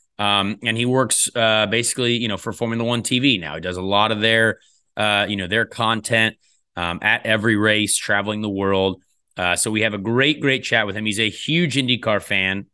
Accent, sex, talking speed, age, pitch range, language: American, male, 215 wpm, 30-49, 100-125 Hz, English